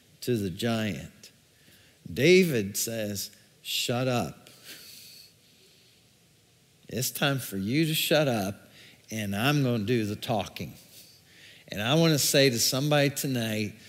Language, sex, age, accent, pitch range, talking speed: English, male, 50-69, American, 115-150 Hz, 125 wpm